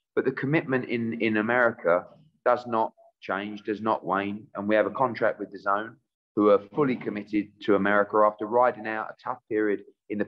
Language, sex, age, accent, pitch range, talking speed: English, male, 30-49, British, 105-140 Hz, 200 wpm